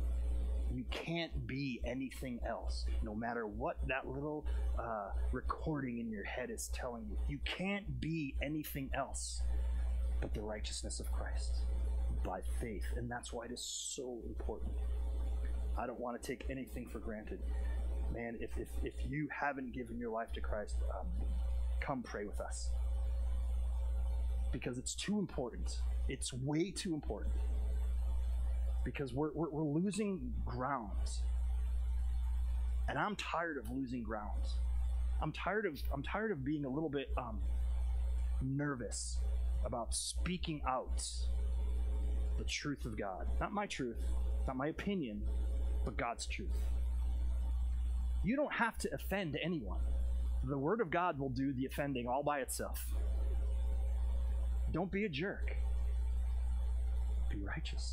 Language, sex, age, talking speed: English, male, 30-49, 135 wpm